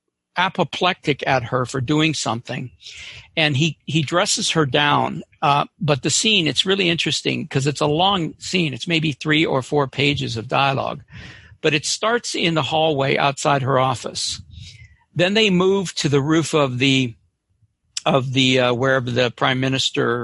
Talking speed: 165 wpm